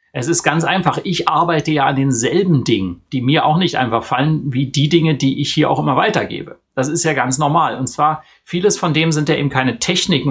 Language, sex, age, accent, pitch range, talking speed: German, male, 30-49, German, 130-165 Hz, 235 wpm